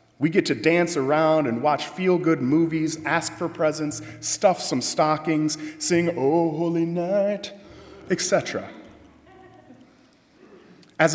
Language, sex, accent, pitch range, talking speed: English, male, American, 145-190 Hz, 115 wpm